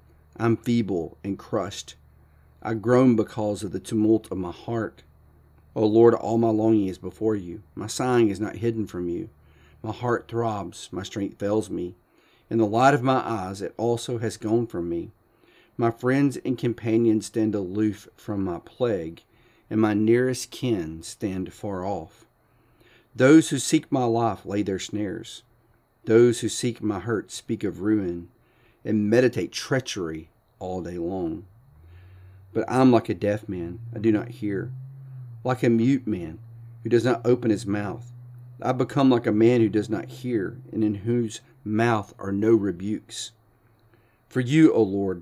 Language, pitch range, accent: English, 100-120 Hz, American